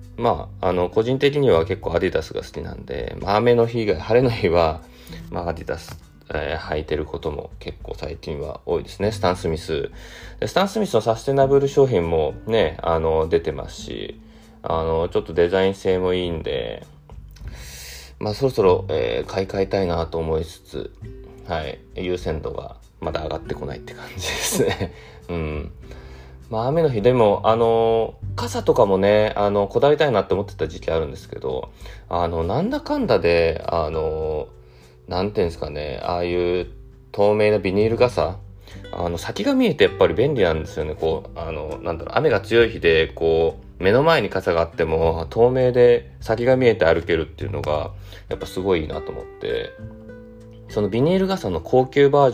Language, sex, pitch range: Japanese, male, 85-120 Hz